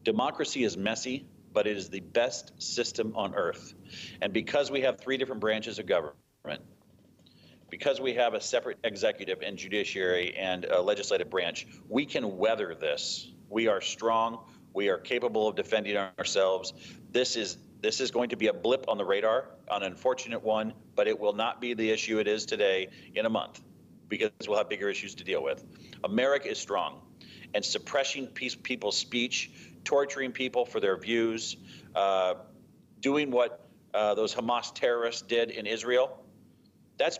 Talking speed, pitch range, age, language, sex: 170 wpm, 105-140 Hz, 40-59, English, male